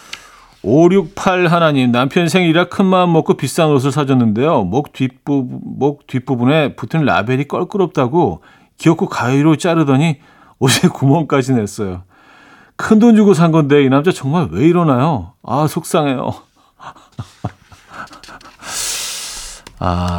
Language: Korean